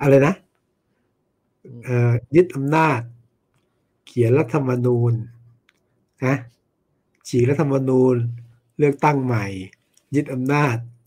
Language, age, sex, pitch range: Thai, 60-79, male, 115-135 Hz